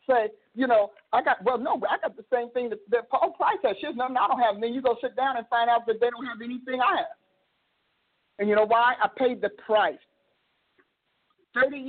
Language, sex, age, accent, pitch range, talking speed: English, male, 50-69, American, 225-260 Hz, 230 wpm